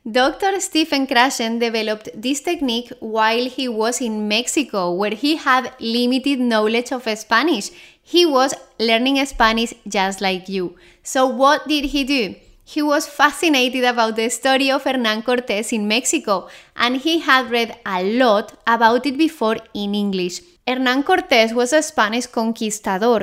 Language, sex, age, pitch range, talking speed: English, female, 20-39, 220-275 Hz, 150 wpm